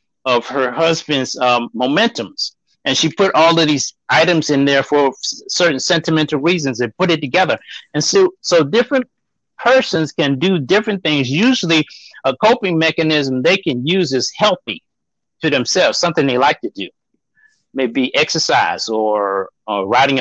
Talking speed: 155 wpm